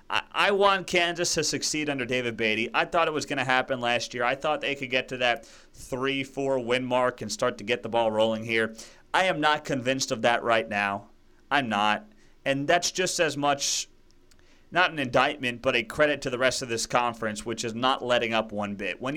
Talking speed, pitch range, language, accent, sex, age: 220 wpm, 120-160 Hz, English, American, male, 30-49